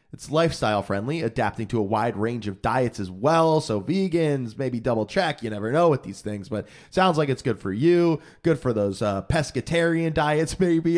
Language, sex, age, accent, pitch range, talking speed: English, male, 20-39, American, 120-170 Hz, 200 wpm